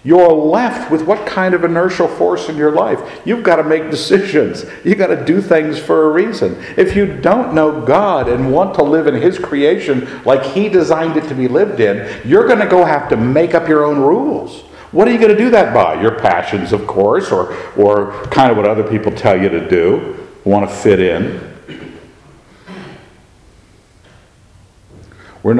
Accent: American